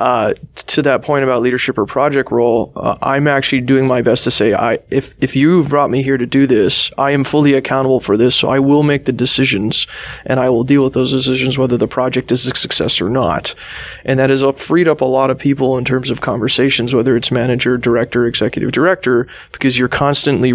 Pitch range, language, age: 120-135 Hz, English, 20-39